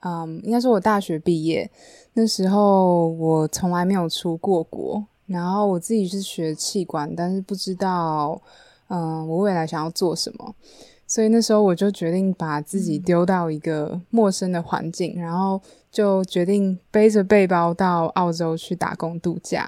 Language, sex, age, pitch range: Chinese, female, 20-39, 170-210 Hz